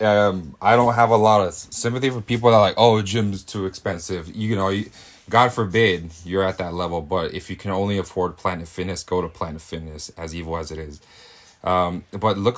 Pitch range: 85-100 Hz